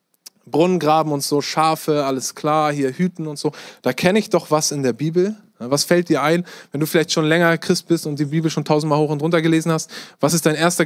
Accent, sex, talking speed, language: German, male, 240 wpm, German